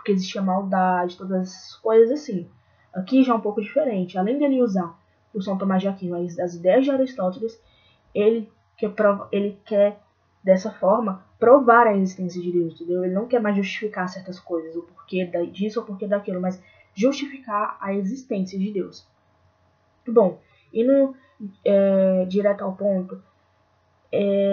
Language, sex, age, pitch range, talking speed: Portuguese, female, 10-29, 185-225 Hz, 165 wpm